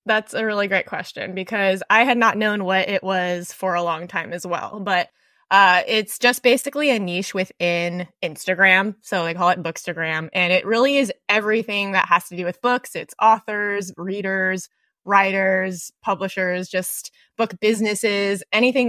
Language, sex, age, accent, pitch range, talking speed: English, female, 20-39, American, 180-230 Hz, 170 wpm